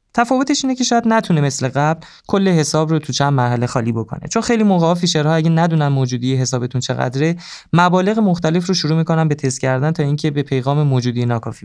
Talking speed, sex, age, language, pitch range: 195 wpm, male, 20-39, Persian, 135-185 Hz